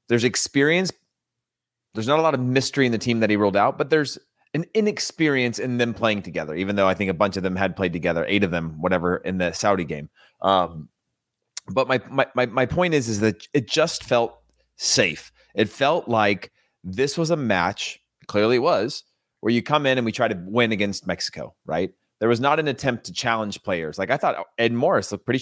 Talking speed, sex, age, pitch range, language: 220 wpm, male, 30-49, 100-125 Hz, English